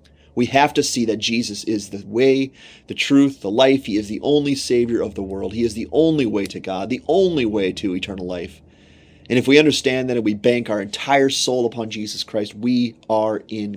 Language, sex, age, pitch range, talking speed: English, male, 30-49, 105-130 Hz, 220 wpm